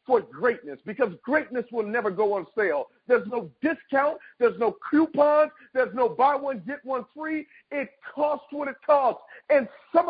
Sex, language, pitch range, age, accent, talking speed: male, English, 235-295 Hz, 50-69, American, 170 wpm